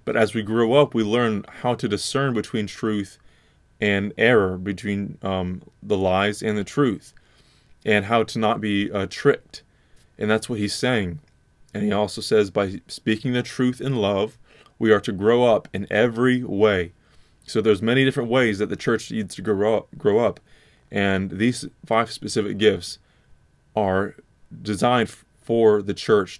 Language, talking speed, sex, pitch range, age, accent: English, 170 wpm, male, 100-120 Hz, 20-39, American